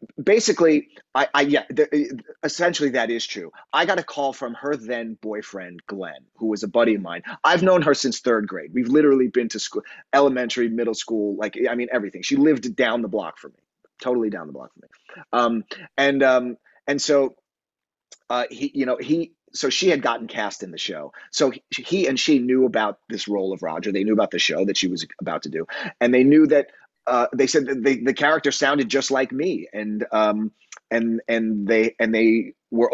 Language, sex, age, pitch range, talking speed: English, male, 30-49, 110-140 Hz, 215 wpm